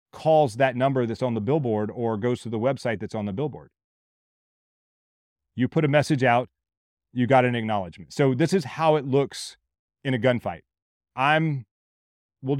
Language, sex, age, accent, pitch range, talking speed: English, male, 30-49, American, 110-145 Hz, 170 wpm